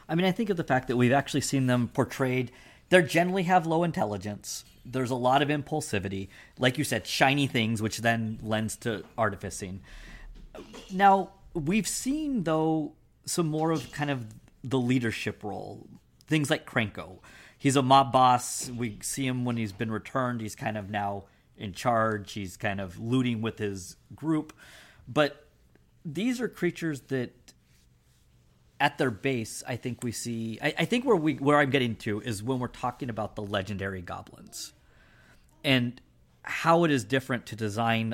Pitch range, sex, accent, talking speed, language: 105-145 Hz, male, American, 170 wpm, English